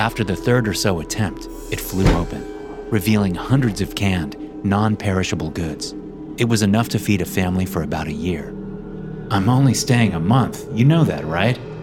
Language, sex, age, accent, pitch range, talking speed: English, male, 30-49, American, 85-125 Hz, 180 wpm